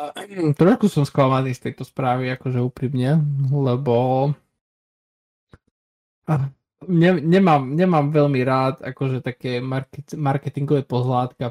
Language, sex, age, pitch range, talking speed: Slovak, male, 20-39, 120-140 Hz, 90 wpm